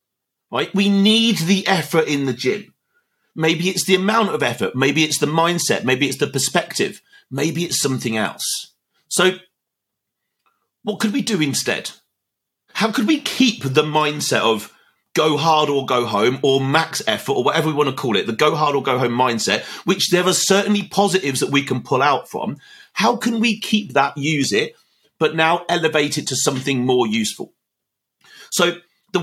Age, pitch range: 40-59, 135-195 Hz